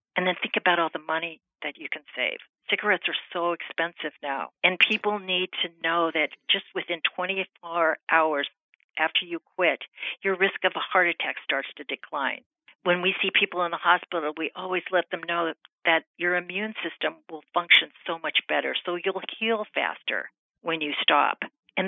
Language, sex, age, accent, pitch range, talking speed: English, female, 50-69, American, 160-195 Hz, 185 wpm